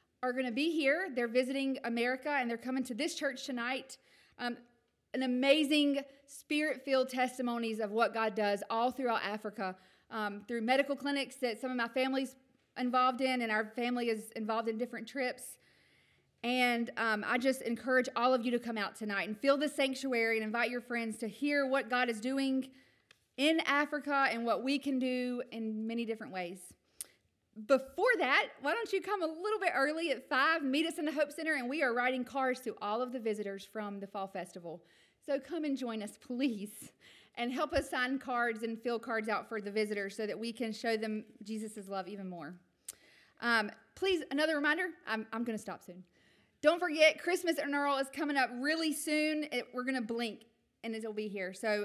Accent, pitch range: American, 225-280 Hz